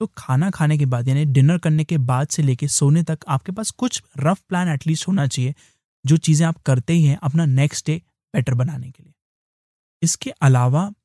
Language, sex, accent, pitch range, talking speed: English, male, Indian, 135-160 Hz, 205 wpm